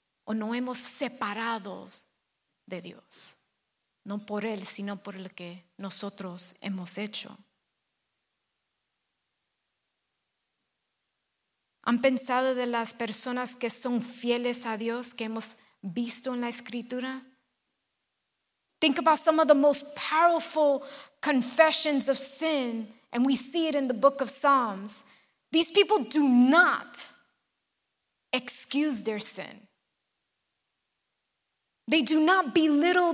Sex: female